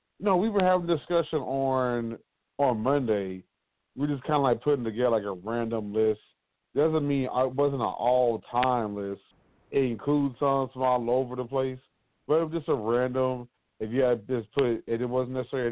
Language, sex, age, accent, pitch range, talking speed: English, male, 30-49, American, 115-135 Hz, 195 wpm